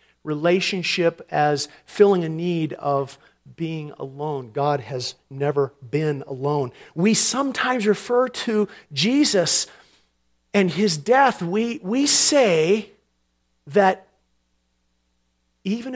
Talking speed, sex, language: 100 wpm, male, English